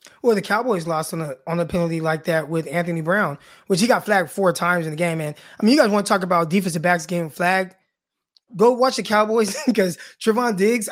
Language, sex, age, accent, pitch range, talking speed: English, male, 20-39, American, 190-230 Hz, 230 wpm